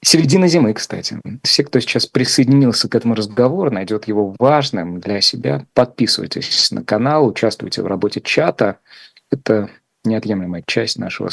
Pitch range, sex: 105-130 Hz, male